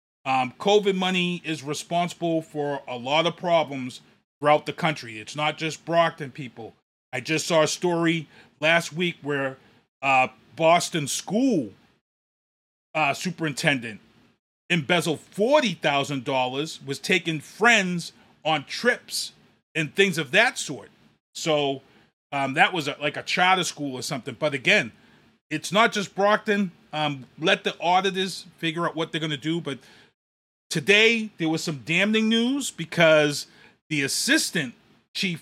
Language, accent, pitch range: English, American, 140-185 Hz